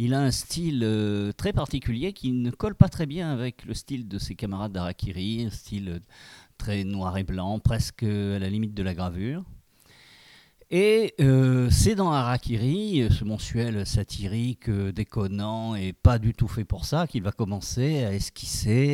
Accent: French